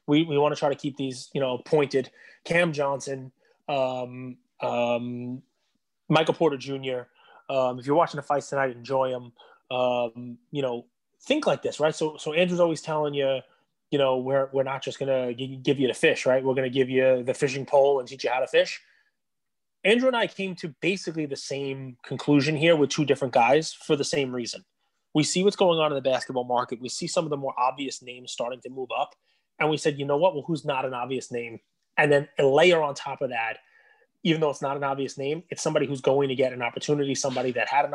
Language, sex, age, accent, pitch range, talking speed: English, male, 20-39, American, 130-150 Hz, 230 wpm